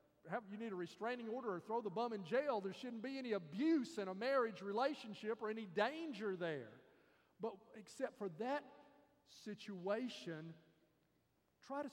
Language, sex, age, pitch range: English, male, 40-59, 170-220 Hz